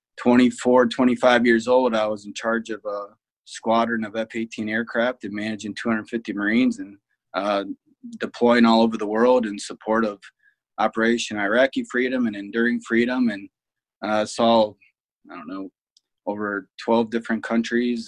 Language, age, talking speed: English, 20-39, 150 wpm